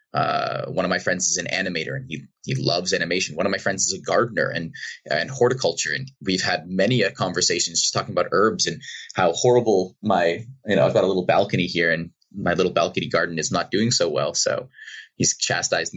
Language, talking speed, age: English, 215 wpm, 20-39